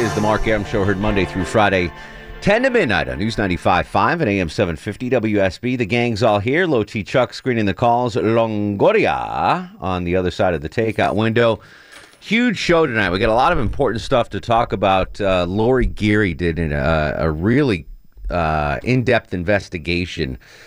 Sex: male